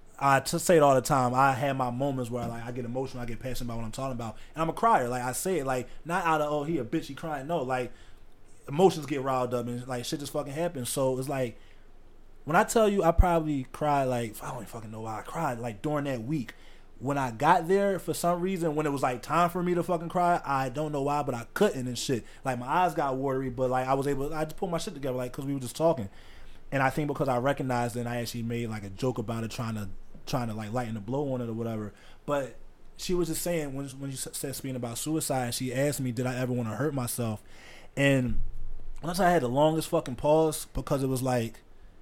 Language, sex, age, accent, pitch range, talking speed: English, male, 20-39, American, 115-145 Hz, 270 wpm